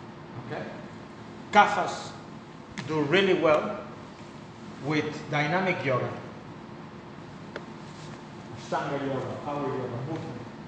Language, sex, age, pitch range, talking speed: English, male, 30-49, 130-165 Hz, 75 wpm